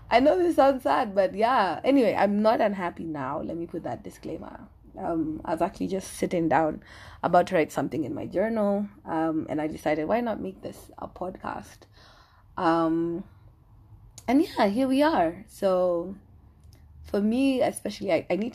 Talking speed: 175 wpm